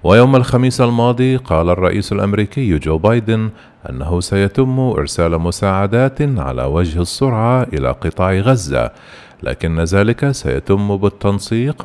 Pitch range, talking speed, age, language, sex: 85-125 Hz, 110 wpm, 40-59, Arabic, male